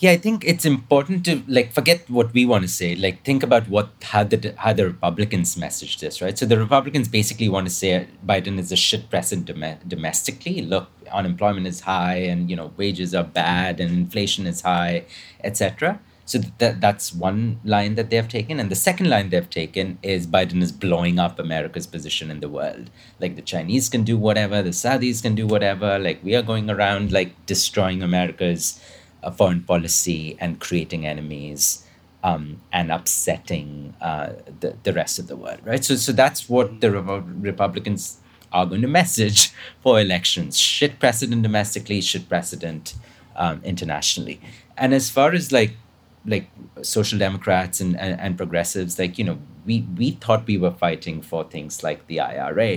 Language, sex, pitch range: English, male, 90-115 Hz